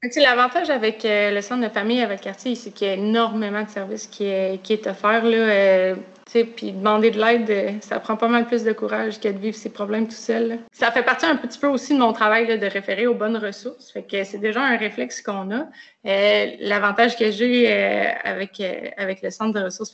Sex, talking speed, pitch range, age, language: female, 230 wpm, 205-240 Hz, 30-49, French